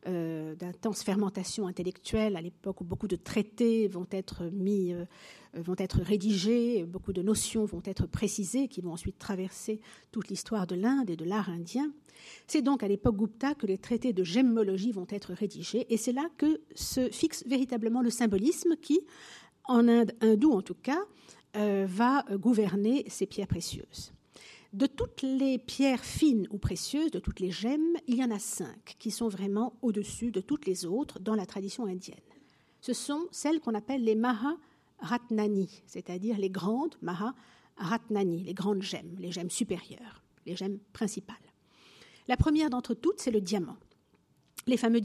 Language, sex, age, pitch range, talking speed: French, female, 50-69, 190-245 Hz, 170 wpm